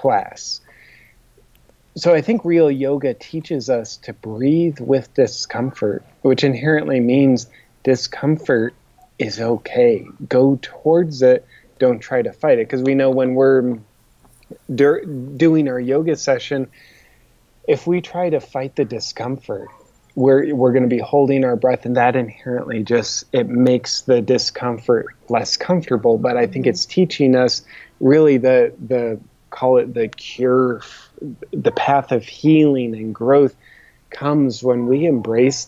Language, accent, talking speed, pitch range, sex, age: English, American, 140 wpm, 125-145 Hz, male, 30-49